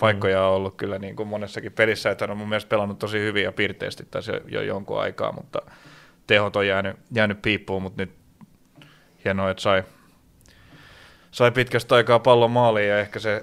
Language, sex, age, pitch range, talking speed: Finnish, male, 30-49, 100-110 Hz, 175 wpm